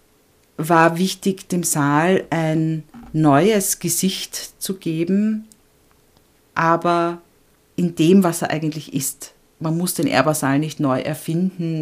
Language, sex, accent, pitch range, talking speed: German, female, German, 140-165 Hz, 115 wpm